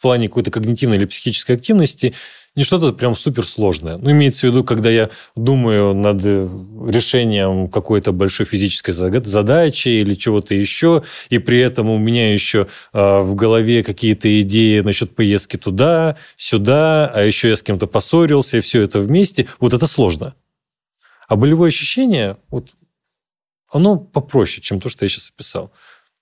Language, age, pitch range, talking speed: Russian, 30-49, 100-135 Hz, 150 wpm